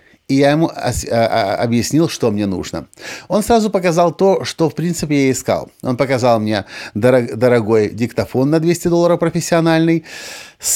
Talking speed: 140 wpm